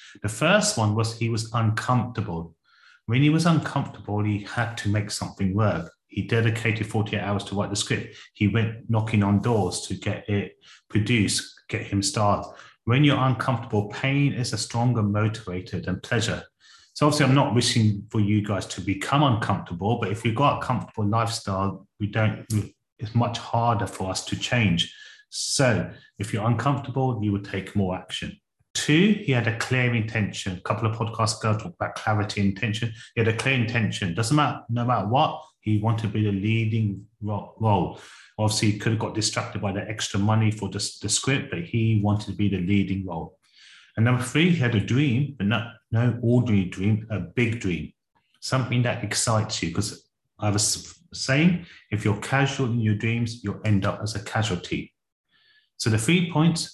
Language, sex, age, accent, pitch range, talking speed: English, male, 30-49, British, 100-120 Hz, 190 wpm